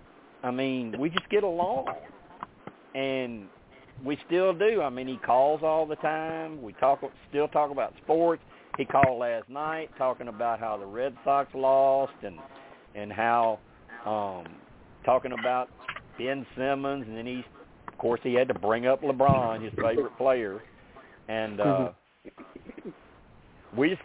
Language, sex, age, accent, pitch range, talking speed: English, male, 50-69, American, 120-155 Hz, 150 wpm